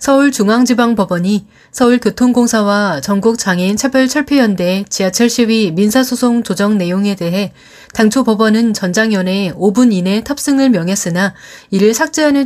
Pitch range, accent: 195-245 Hz, native